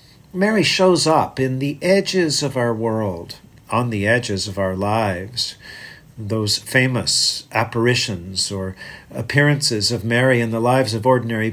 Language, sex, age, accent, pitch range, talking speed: English, male, 50-69, American, 110-150 Hz, 140 wpm